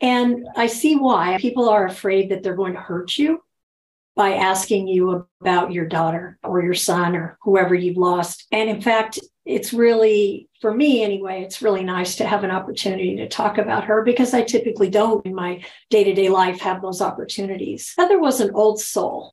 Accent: American